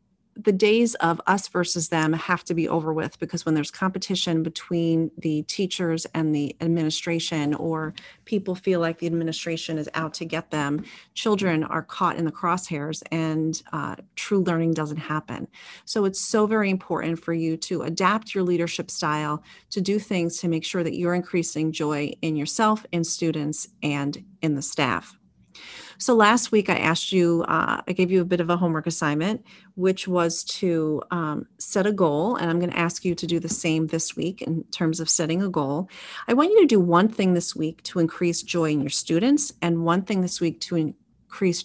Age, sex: 40-59, female